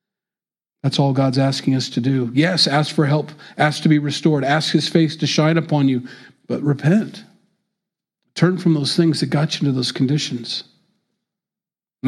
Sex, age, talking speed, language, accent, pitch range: male, 40-59, 175 wpm, English, American, 140-180 Hz